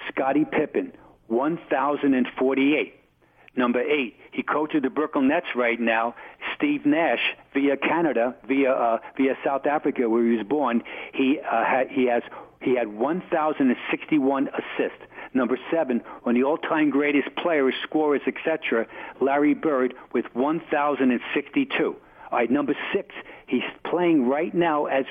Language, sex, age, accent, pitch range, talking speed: English, male, 60-79, American, 130-170 Hz, 135 wpm